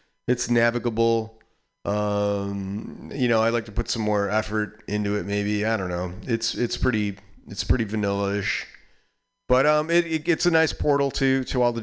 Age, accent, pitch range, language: 40-59, American, 110-145 Hz, English